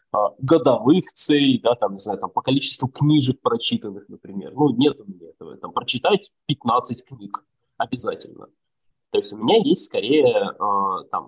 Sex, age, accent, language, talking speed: male, 20-39, native, Russian, 155 wpm